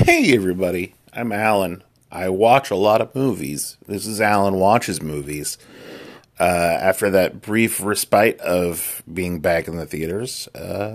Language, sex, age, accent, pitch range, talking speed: English, male, 30-49, American, 85-110 Hz, 140 wpm